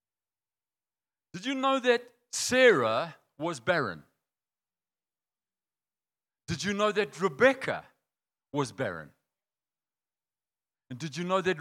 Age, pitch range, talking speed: 50-69, 155-240 Hz, 100 wpm